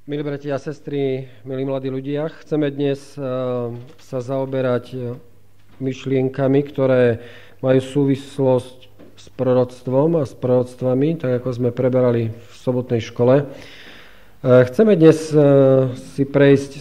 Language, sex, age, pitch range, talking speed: Slovak, male, 40-59, 125-140 Hz, 110 wpm